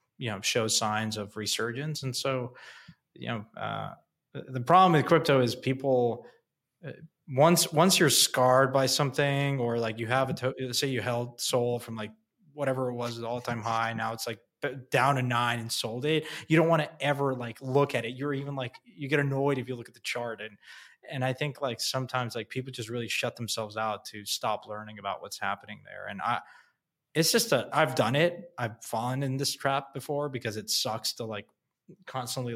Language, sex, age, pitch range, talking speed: English, male, 20-39, 115-140 Hz, 210 wpm